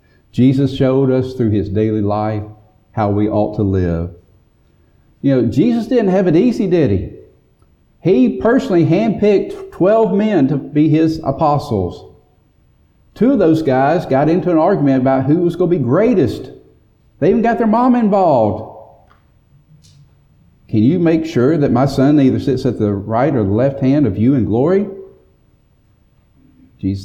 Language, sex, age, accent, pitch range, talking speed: English, male, 50-69, American, 105-145 Hz, 160 wpm